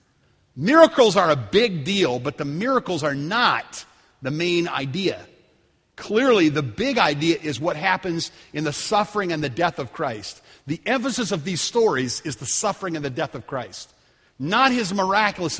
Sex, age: male, 50-69